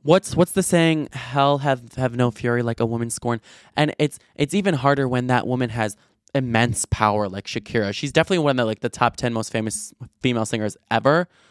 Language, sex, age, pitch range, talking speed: English, male, 20-39, 115-150 Hz, 210 wpm